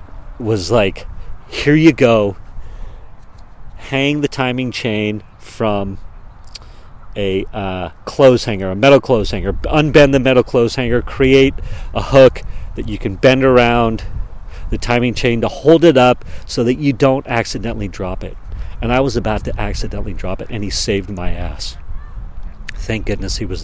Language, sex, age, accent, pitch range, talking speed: English, male, 40-59, American, 95-130 Hz, 155 wpm